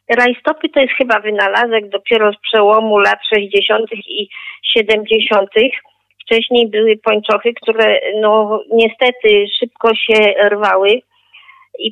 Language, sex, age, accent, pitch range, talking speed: Polish, female, 40-59, native, 210-250 Hz, 110 wpm